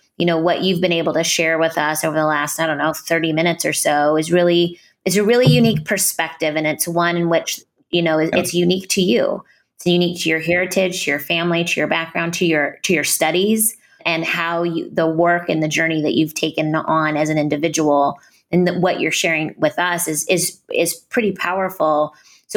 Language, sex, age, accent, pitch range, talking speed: English, female, 20-39, American, 165-195 Hz, 215 wpm